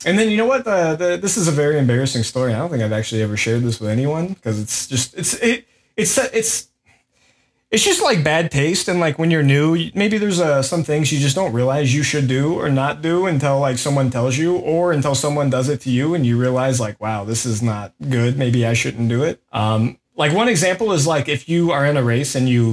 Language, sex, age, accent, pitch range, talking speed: English, male, 20-39, American, 120-165 Hz, 245 wpm